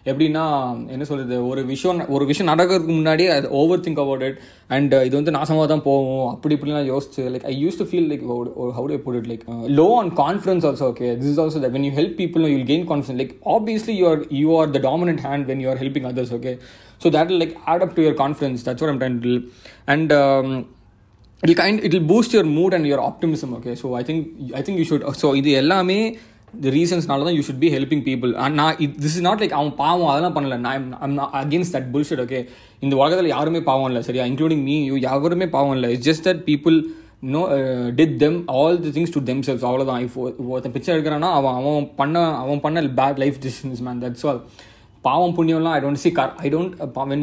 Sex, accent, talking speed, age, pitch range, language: male, native, 215 wpm, 20-39, 130-160 Hz, Tamil